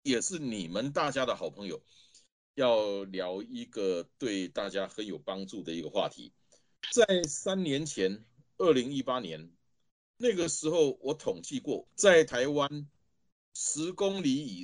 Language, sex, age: Chinese, male, 30-49